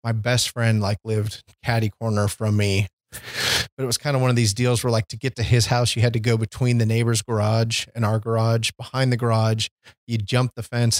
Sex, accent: male, American